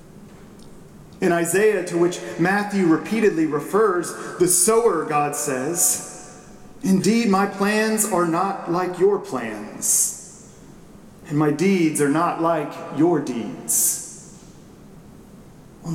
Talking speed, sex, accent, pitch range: 105 wpm, male, American, 165-215 Hz